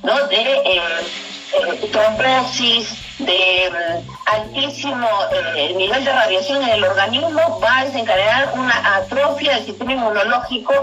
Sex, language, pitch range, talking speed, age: female, Spanish, 215-300 Hz, 135 wpm, 40-59